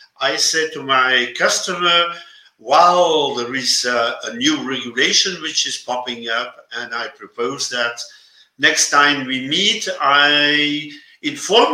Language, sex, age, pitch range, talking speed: English, male, 50-69, 125-180 Hz, 135 wpm